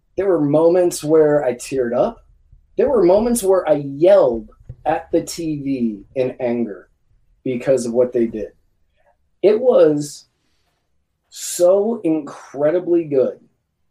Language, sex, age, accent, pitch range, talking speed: English, male, 20-39, American, 120-150 Hz, 120 wpm